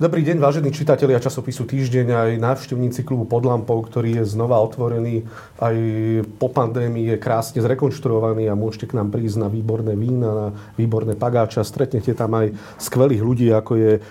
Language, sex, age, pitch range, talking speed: Slovak, male, 40-59, 110-125 Hz, 160 wpm